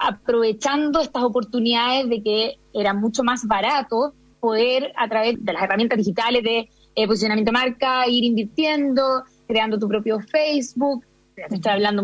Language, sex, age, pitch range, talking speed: Spanish, female, 20-39, 220-255 Hz, 150 wpm